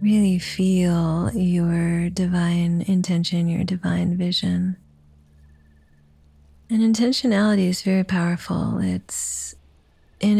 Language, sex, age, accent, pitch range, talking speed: English, female, 30-49, American, 175-200 Hz, 85 wpm